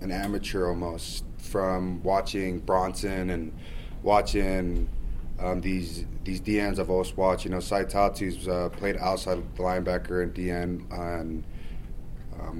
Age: 20-39